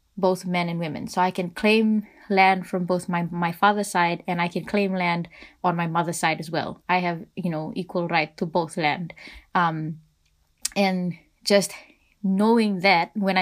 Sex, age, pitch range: female, 20-39, 170-190 Hz